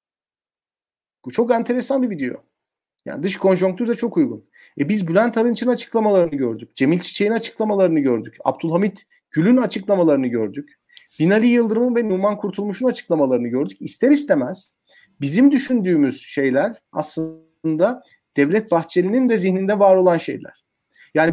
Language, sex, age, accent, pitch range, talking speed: Turkish, male, 40-59, native, 155-225 Hz, 130 wpm